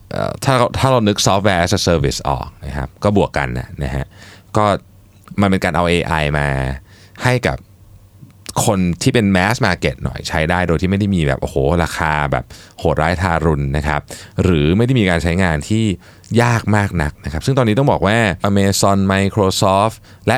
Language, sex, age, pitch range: Thai, male, 20-39, 80-105 Hz